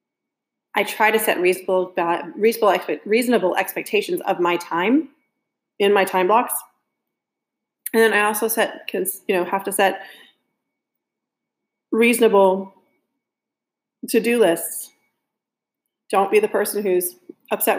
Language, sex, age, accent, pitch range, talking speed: English, female, 30-49, American, 170-205 Hz, 120 wpm